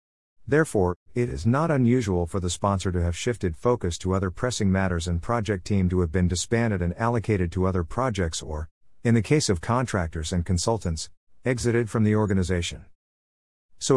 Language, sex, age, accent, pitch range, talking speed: English, male, 50-69, American, 85-115 Hz, 175 wpm